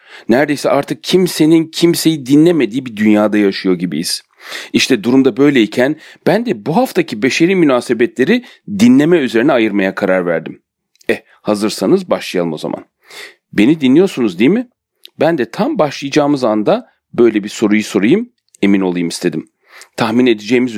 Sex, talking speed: male, 135 wpm